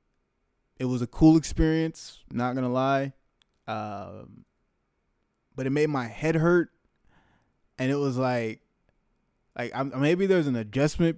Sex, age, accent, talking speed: male, 20-39, American, 130 wpm